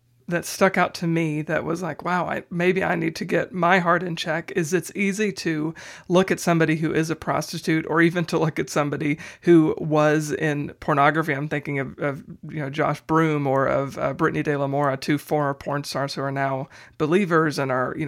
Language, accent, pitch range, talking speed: English, American, 150-170 Hz, 220 wpm